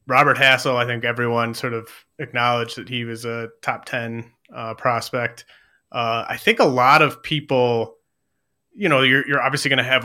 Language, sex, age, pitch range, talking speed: English, male, 30-49, 115-135 Hz, 185 wpm